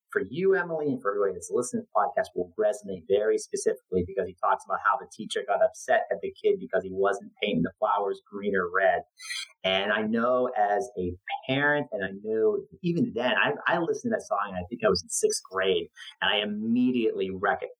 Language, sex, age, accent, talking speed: English, male, 30-49, American, 215 wpm